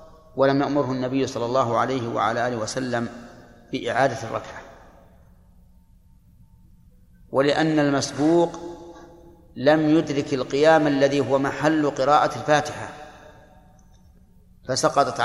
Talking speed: 85 wpm